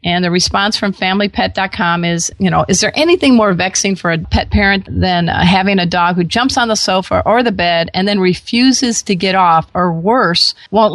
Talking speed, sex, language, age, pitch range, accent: 215 wpm, female, English, 40-59, 175-210 Hz, American